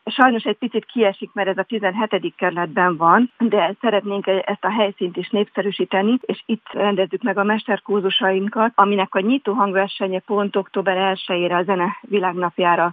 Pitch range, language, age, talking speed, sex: 175-210 Hz, Hungarian, 40-59, 145 wpm, female